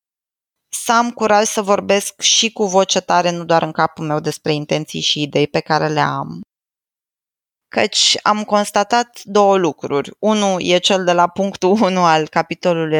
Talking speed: 165 wpm